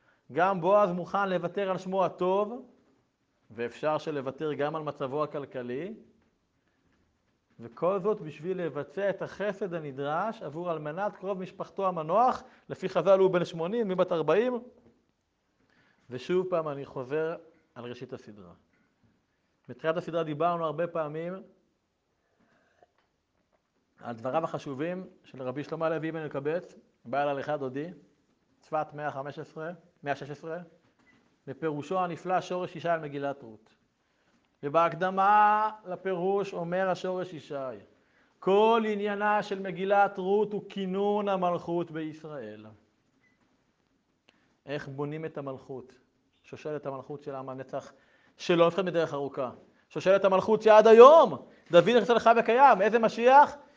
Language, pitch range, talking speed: Hebrew, 145-200 Hz, 120 wpm